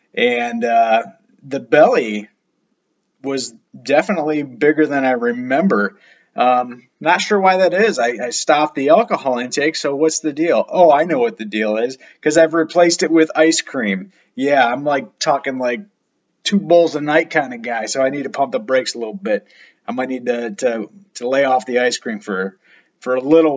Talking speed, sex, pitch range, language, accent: 195 wpm, male, 125-170 Hz, English, American